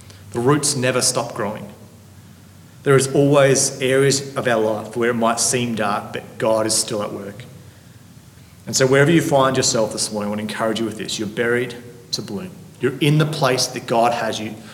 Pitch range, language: 110-130 Hz, English